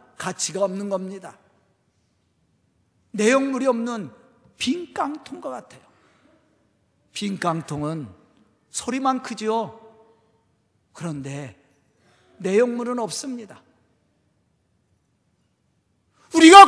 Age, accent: 40-59, native